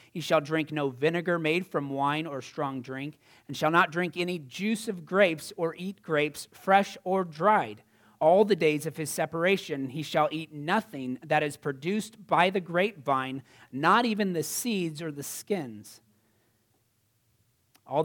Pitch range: 125-175 Hz